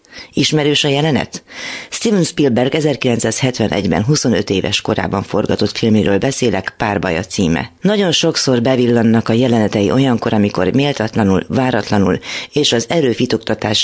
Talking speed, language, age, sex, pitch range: 115 wpm, Hungarian, 30-49, female, 100-135 Hz